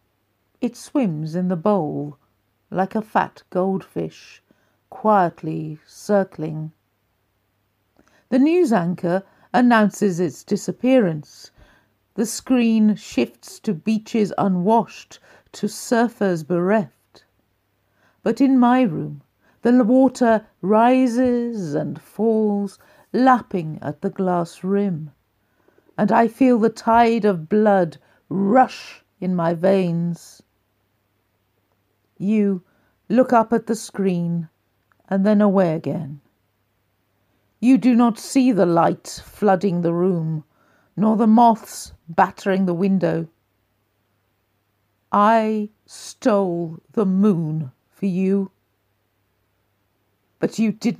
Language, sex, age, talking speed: English, female, 50-69, 100 wpm